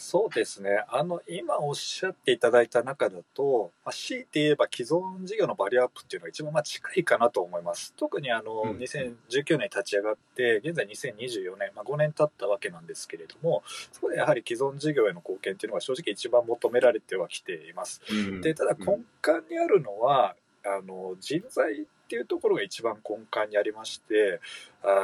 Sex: male